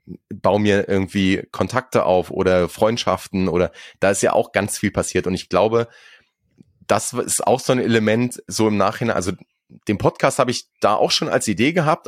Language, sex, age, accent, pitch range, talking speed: German, male, 30-49, German, 100-115 Hz, 190 wpm